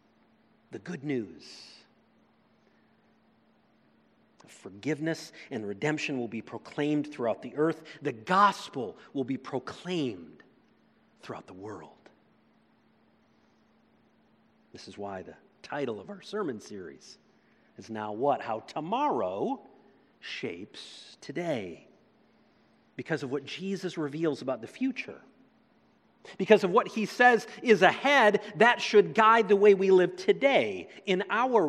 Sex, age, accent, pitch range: male, 50-69, American, 130-205 Hz